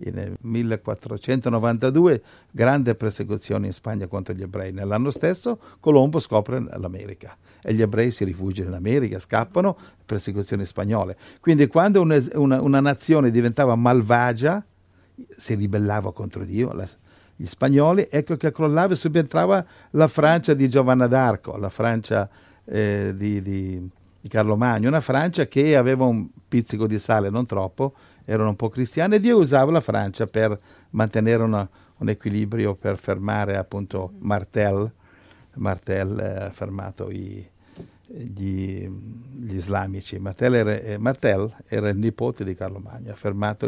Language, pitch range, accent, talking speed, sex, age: Italian, 100-130 Hz, native, 140 wpm, male, 50-69